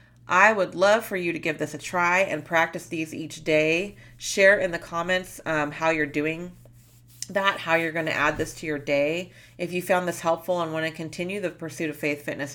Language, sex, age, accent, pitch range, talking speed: English, female, 30-49, American, 145-175 Hz, 225 wpm